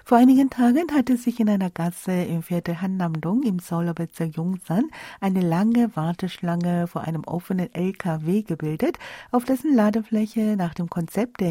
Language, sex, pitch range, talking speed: German, female, 170-235 Hz, 150 wpm